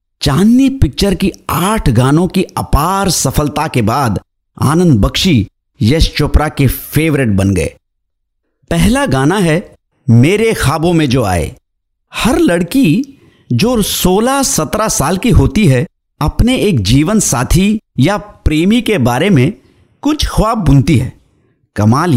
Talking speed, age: 130 wpm, 50-69